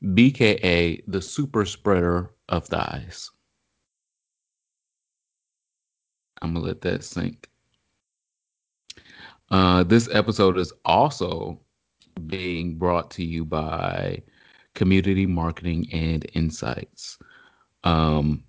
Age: 30-49